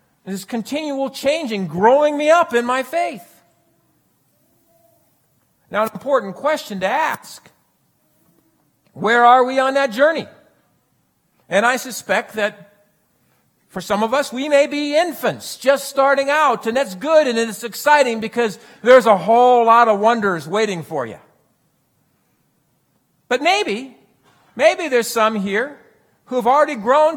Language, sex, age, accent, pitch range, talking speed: English, male, 50-69, American, 190-275 Hz, 135 wpm